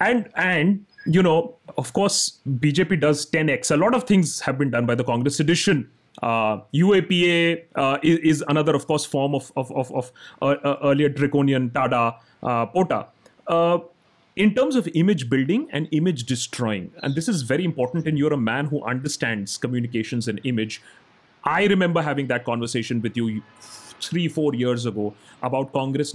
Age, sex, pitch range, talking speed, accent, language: 30-49, male, 115-155 Hz, 170 wpm, native, Hindi